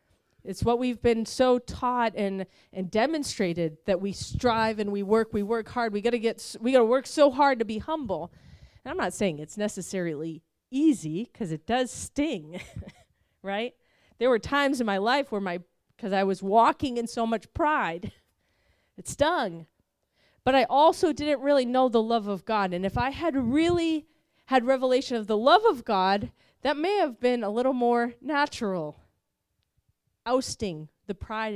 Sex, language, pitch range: female, English, 190-255 Hz